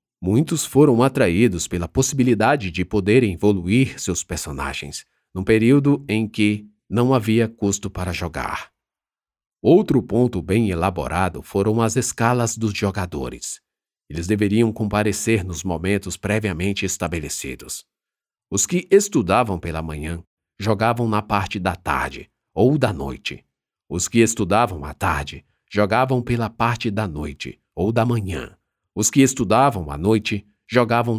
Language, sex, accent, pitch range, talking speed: Portuguese, male, Brazilian, 90-115 Hz, 130 wpm